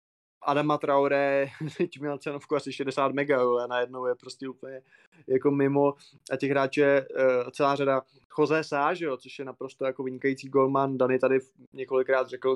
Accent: native